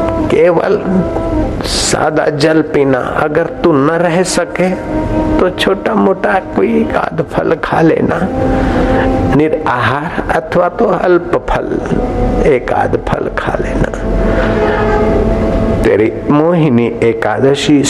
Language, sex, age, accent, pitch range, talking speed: Hindi, male, 60-79, native, 125-170 Hz, 100 wpm